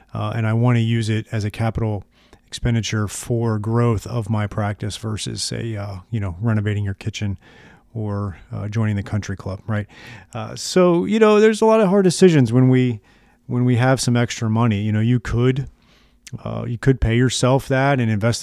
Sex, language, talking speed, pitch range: male, English, 200 wpm, 105-120 Hz